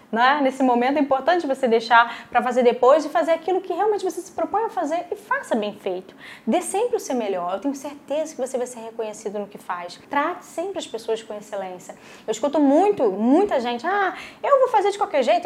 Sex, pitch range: female, 235-305 Hz